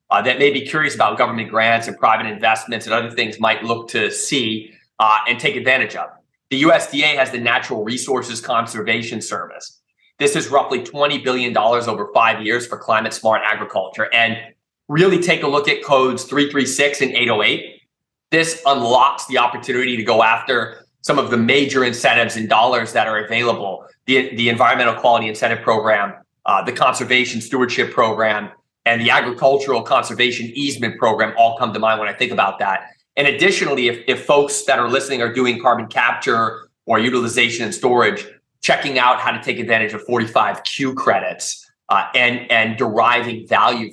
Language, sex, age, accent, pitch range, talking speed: English, male, 30-49, American, 115-135 Hz, 170 wpm